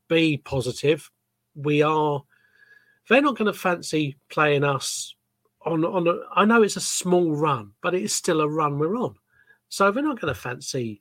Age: 40-59